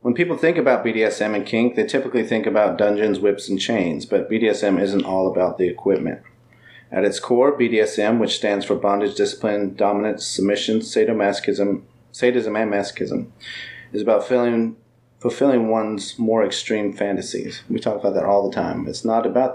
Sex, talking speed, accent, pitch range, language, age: male, 170 wpm, American, 100-125 Hz, English, 30-49